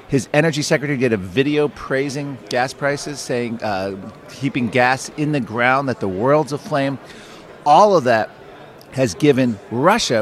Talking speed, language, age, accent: 155 wpm, English, 40-59, American